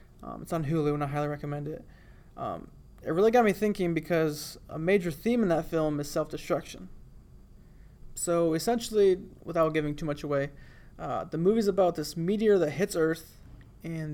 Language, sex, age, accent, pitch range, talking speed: English, male, 30-49, American, 155-180 Hz, 175 wpm